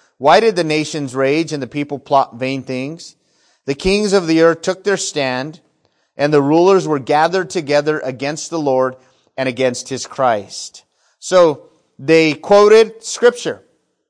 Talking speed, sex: 155 wpm, male